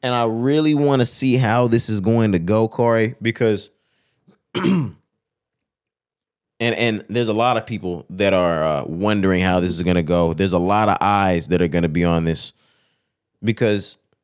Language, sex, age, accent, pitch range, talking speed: English, male, 20-39, American, 100-115 Hz, 185 wpm